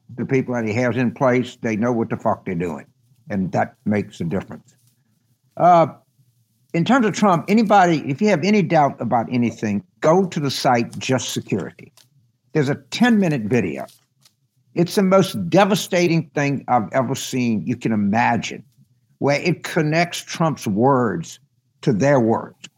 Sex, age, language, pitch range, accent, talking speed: male, 60-79, English, 125-170 Hz, American, 160 wpm